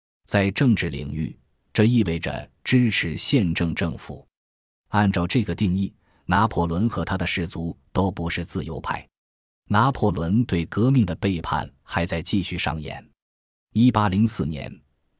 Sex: male